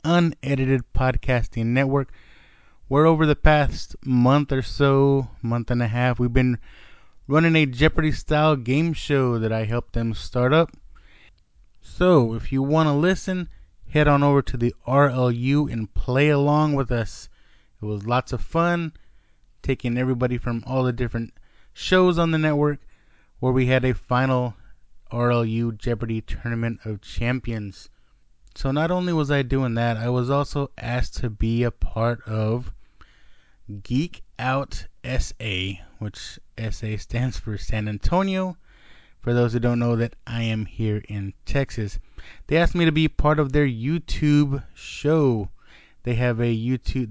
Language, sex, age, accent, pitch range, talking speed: English, male, 20-39, American, 110-140 Hz, 155 wpm